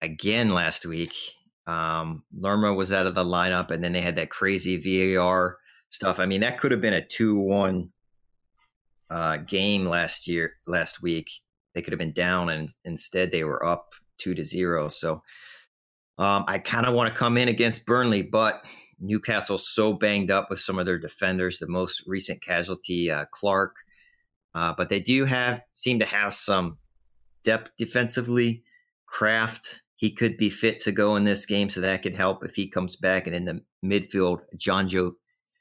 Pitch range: 90-110 Hz